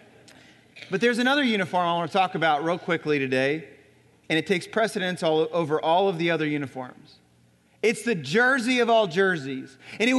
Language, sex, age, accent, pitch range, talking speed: English, male, 30-49, American, 180-245 Hz, 185 wpm